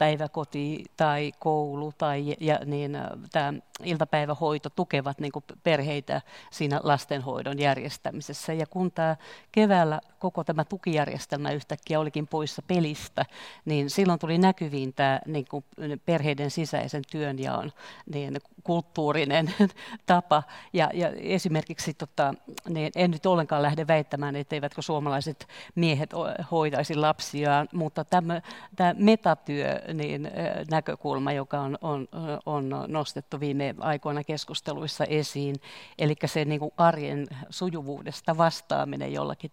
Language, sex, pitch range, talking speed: Finnish, female, 145-165 Hz, 115 wpm